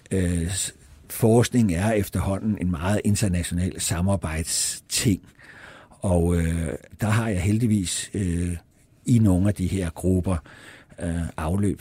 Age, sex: 60-79, male